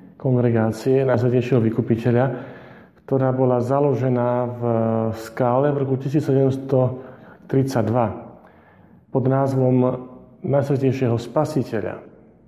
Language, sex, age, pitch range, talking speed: Slovak, male, 40-59, 115-135 Hz, 70 wpm